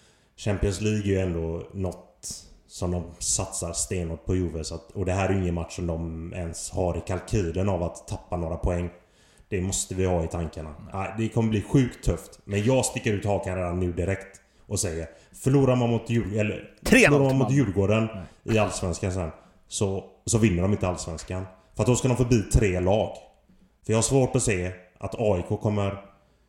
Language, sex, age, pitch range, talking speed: Swedish, male, 30-49, 90-110 Hz, 195 wpm